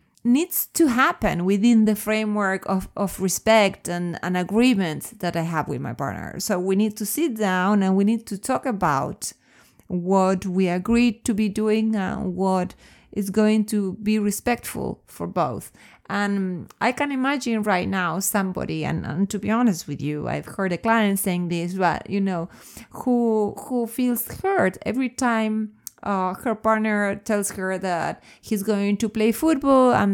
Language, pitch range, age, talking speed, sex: English, 190-235 Hz, 30-49, 170 wpm, female